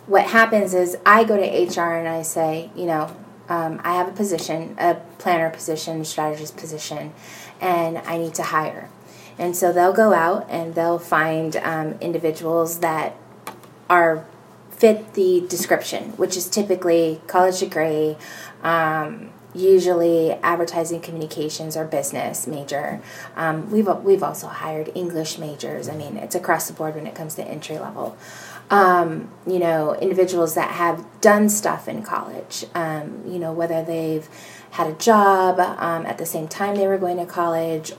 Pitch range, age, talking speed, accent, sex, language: 165-185 Hz, 20-39, 160 wpm, American, female, English